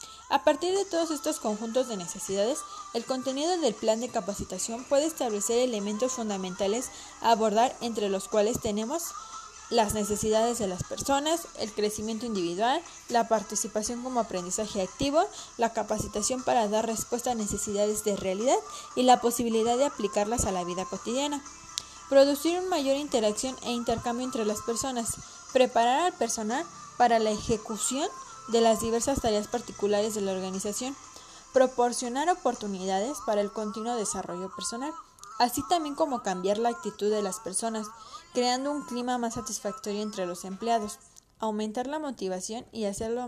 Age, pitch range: 20-39, 205-255 Hz